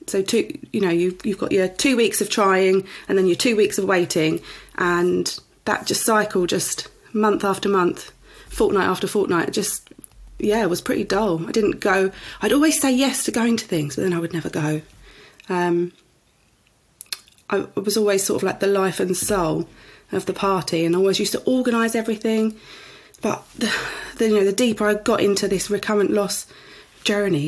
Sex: female